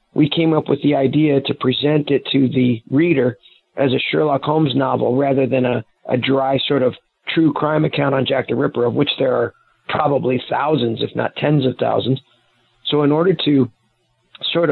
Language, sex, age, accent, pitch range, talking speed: English, male, 40-59, American, 130-150 Hz, 190 wpm